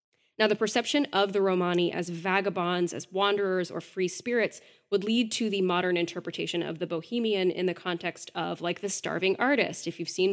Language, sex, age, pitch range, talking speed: English, female, 10-29, 170-200 Hz, 190 wpm